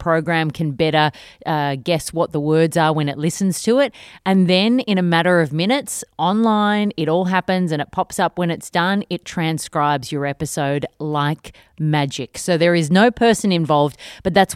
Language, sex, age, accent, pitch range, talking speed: English, female, 30-49, Australian, 155-195 Hz, 190 wpm